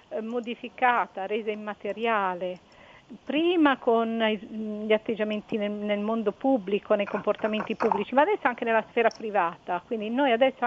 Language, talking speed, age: Italian, 125 wpm, 50-69